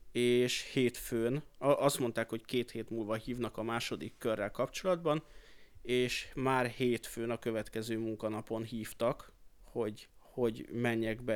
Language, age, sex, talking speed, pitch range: Hungarian, 30-49, male, 125 wpm, 115-125 Hz